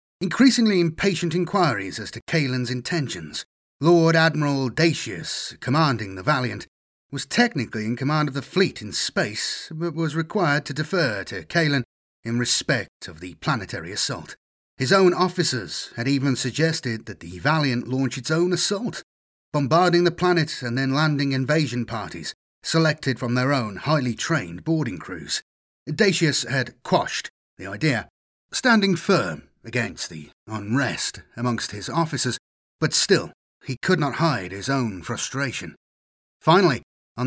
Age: 40-59